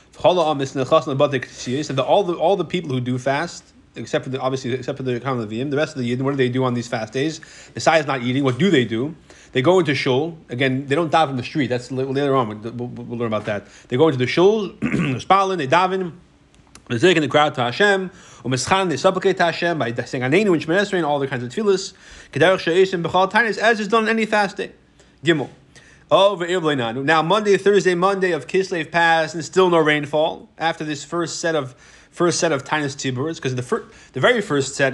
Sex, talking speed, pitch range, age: male, 225 wpm, 130-185 Hz, 30-49